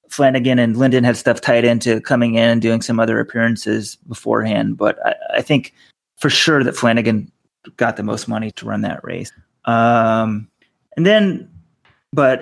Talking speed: 170 wpm